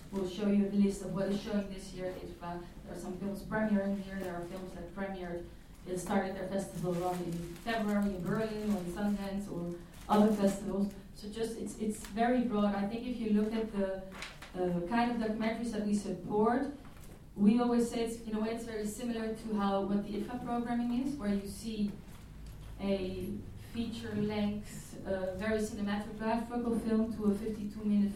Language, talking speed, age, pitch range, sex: English, 190 wpm, 30-49, 190-225 Hz, female